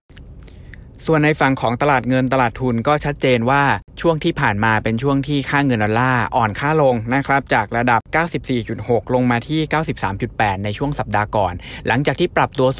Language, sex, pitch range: Thai, male, 110-140 Hz